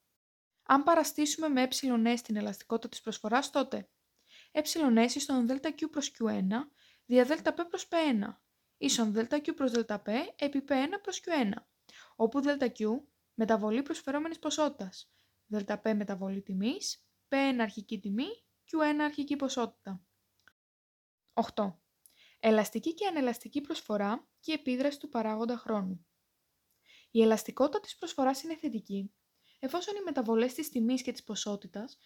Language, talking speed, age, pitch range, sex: Greek, 120 wpm, 20-39, 225-300 Hz, female